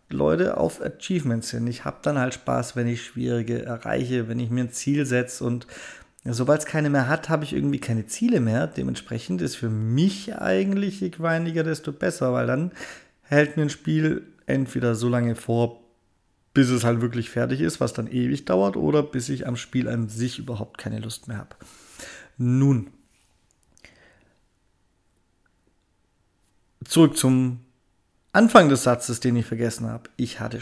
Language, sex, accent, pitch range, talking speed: German, male, German, 115-150 Hz, 165 wpm